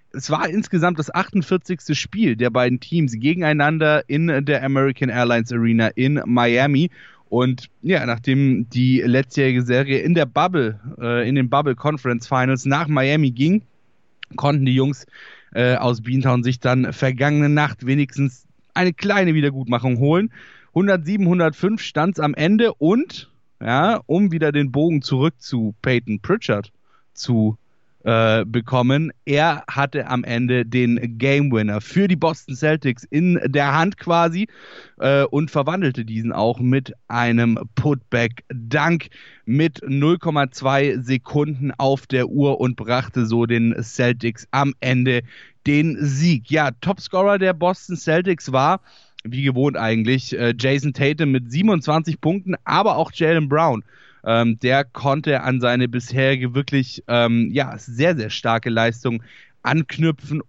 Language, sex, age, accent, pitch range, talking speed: German, male, 10-29, German, 125-155 Hz, 135 wpm